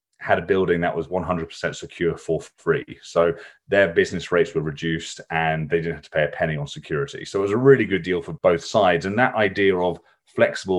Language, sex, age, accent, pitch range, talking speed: English, male, 30-49, British, 85-105 Hz, 220 wpm